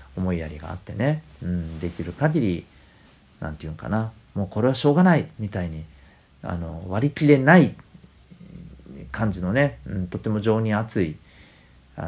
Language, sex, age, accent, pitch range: Japanese, male, 40-59, native, 80-115 Hz